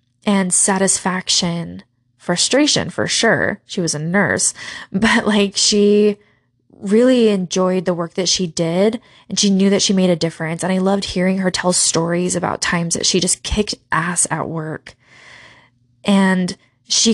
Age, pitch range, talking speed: 20-39, 150-195 Hz, 160 wpm